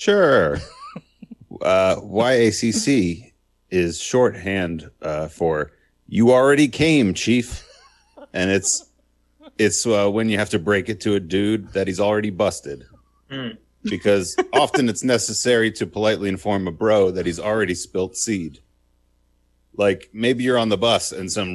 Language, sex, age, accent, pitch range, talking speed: English, male, 30-49, American, 85-110 Hz, 140 wpm